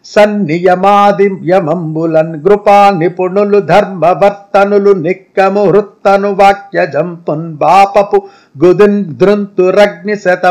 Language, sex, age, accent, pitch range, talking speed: Telugu, male, 50-69, native, 180-210 Hz, 65 wpm